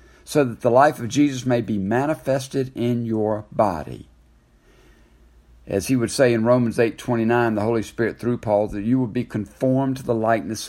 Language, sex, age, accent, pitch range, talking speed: English, male, 60-79, American, 105-150 Hz, 190 wpm